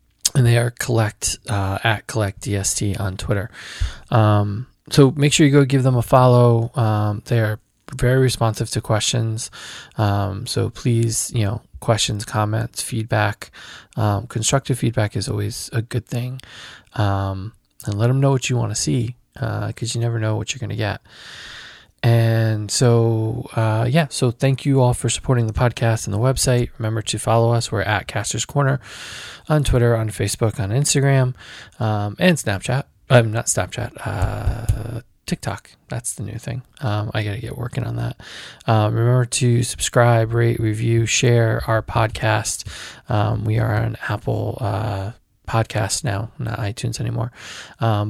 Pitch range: 105-125 Hz